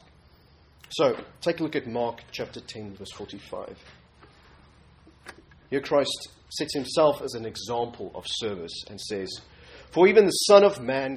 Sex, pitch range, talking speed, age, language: male, 90-135 Hz, 145 wpm, 30-49, English